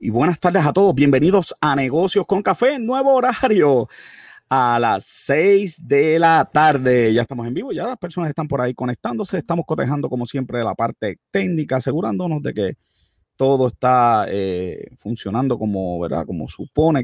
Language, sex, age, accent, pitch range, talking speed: Spanish, male, 30-49, Venezuelan, 125-160 Hz, 165 wpm